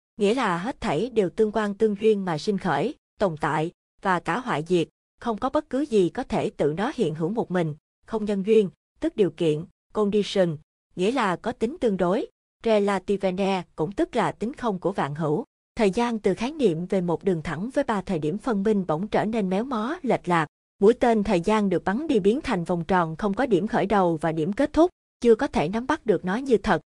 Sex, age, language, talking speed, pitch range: female, 20-39, Vietnamese, 230 wpm, 180-225 Hz